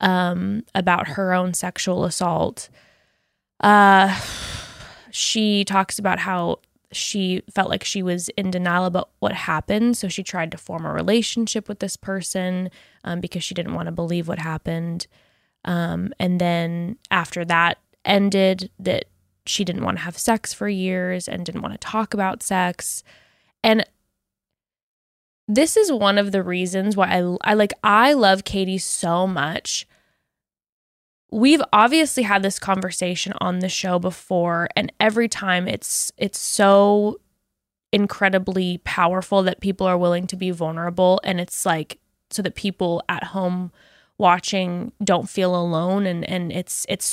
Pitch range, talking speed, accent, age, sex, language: 175-205 Hz, 150 wpm, American, 20-39, female, English